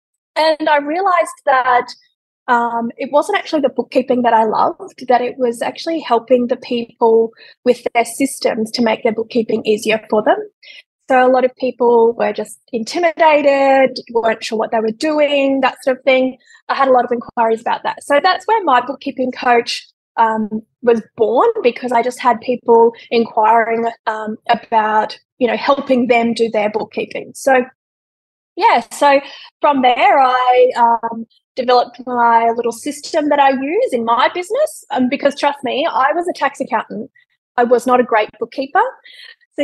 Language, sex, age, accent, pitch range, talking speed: English, female, 20-39, Australian, 235-295 Hz, 170 wpm